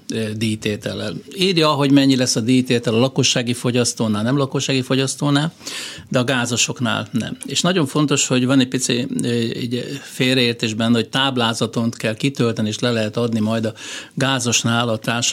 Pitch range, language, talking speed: 110-130 Hz, Hungarian, 150 wpm